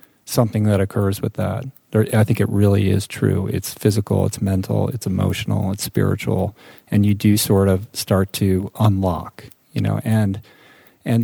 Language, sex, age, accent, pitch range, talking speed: English, male, 40-59, American, 100-115 Hz, 170 wpm